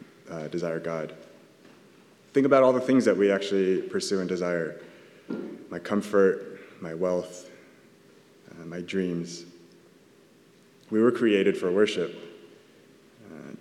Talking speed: 120 wpm